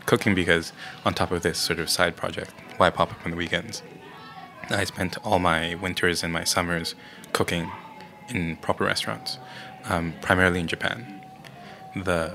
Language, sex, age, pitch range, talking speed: English, male, 20-39, 80-95 Hz, 165 wpm